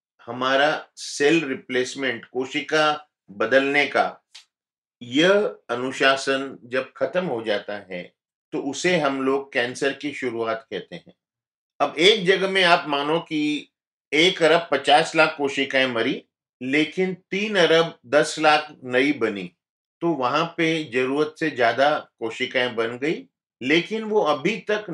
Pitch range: 130-170 Hz